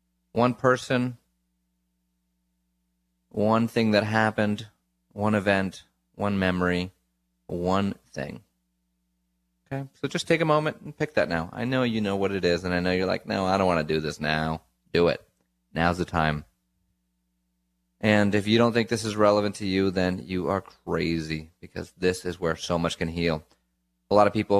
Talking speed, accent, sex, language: 180 wpm, American, male, English